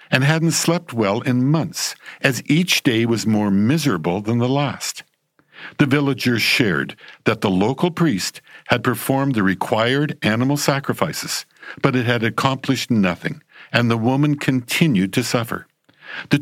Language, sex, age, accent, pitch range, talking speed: English, male, 60-79, American, 115-155 Hz, 145 wpm